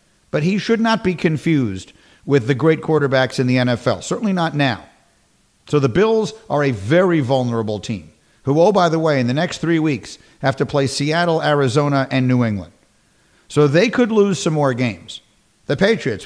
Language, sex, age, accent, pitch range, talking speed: English, male, 50-69, American, 125-165 Hz, 190 wpm